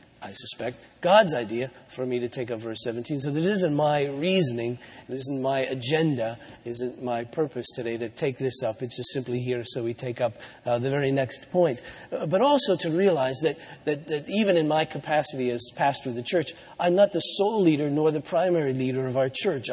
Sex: male